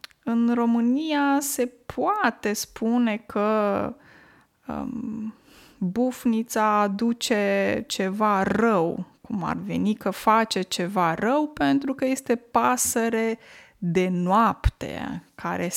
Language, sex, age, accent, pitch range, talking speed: Romanian, female, 20-39, native, 205-250 Hz, 95 wpm